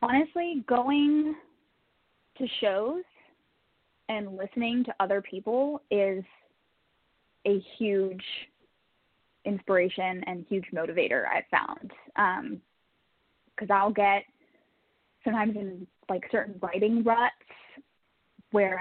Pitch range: 185-235 Hz